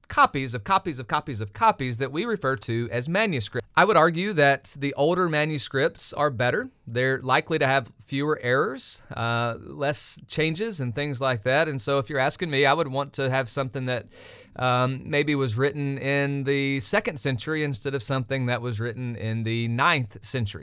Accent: American